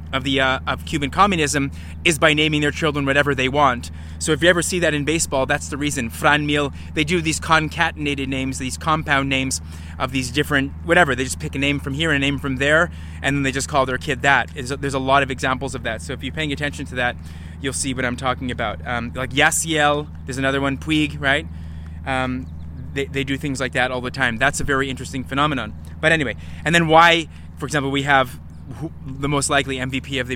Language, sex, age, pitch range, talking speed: English, male, 20-39, 110-145 Hz, 230 wpm